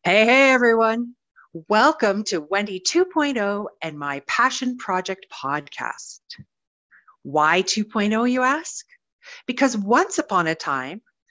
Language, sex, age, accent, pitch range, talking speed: English, female, 40-59, American, 170-235 Hz, 105 wpm